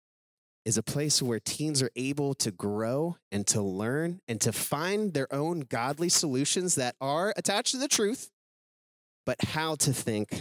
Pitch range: 125-170 Hz